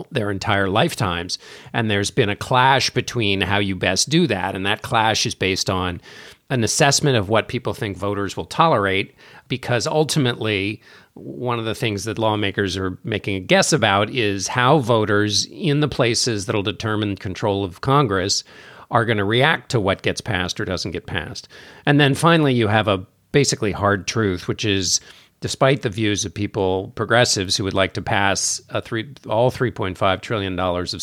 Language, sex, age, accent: English, male, 50-69, American